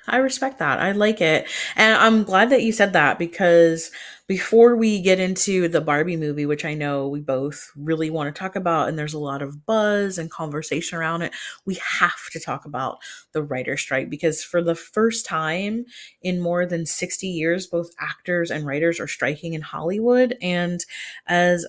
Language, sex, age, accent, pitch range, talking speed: English, female, 30-49, American, 150-200 Hz, 190 wpm